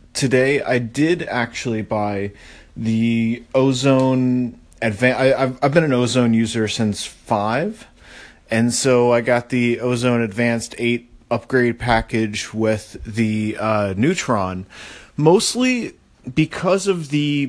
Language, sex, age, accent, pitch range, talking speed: English, male, 30-49, American, 110-140 Hz, 115 wpm